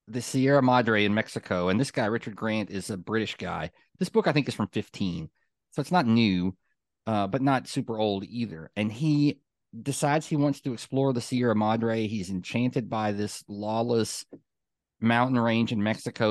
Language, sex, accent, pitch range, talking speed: English, male, American, 105-130 Hz, 185 wpm